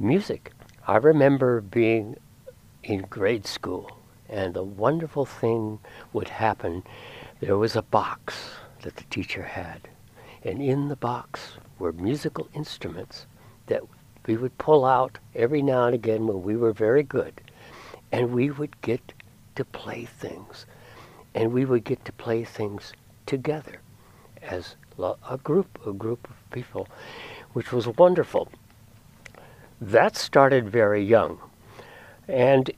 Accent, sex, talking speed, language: American, male, 130 wpm, English